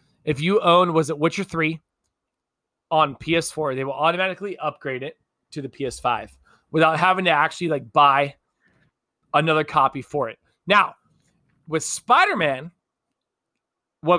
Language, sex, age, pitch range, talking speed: English, male, 20-39, 150-205 Hz, 130 wpm